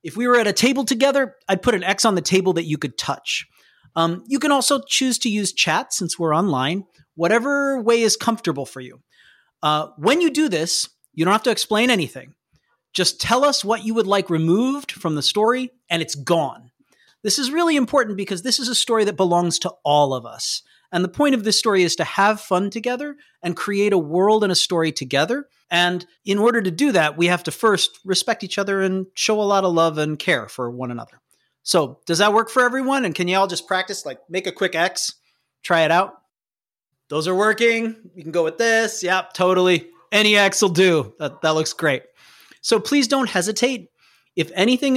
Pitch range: 165-235 Hz